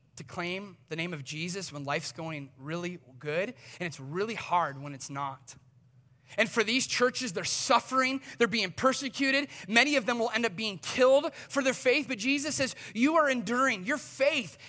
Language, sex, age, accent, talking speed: English, male, 30-49, American, 190 wpm